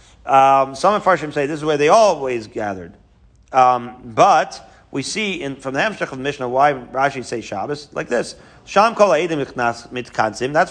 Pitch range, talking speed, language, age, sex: 135-190 Hz, 165 wpm, English, 40-59, male